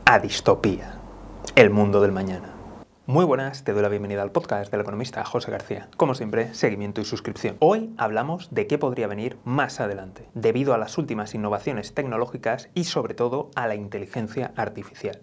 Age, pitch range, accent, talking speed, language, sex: 30-49, 105-165 Hz, Spanish, 175 wpm, Spanish, male